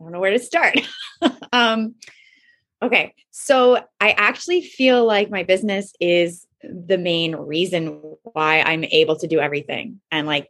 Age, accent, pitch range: 20-39, American, 160-210 Hz